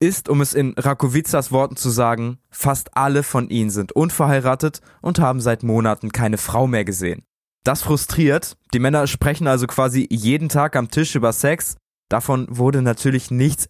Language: German